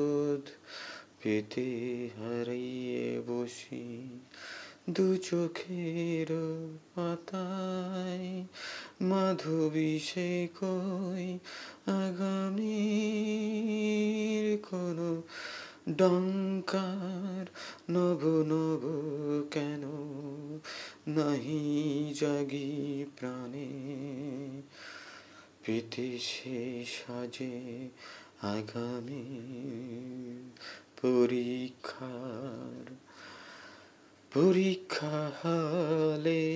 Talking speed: 35 wpm